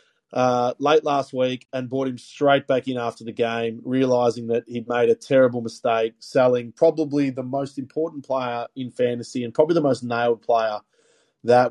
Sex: male